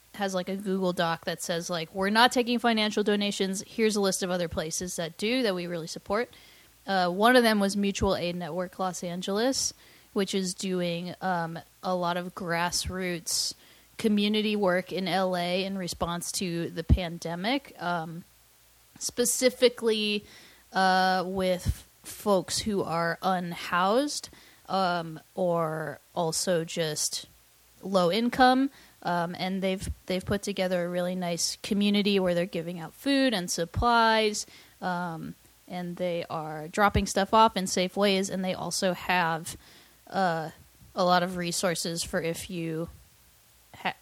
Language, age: English, 20-39